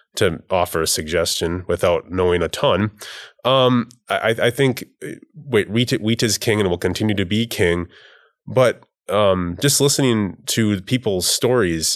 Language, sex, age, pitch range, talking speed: English, male, 20-39, 90-125 Hz, 145 wpm